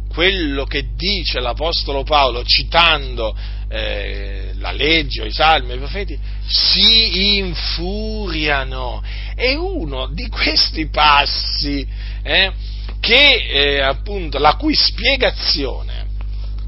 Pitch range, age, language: 105-170 Hz, 40-59, Italian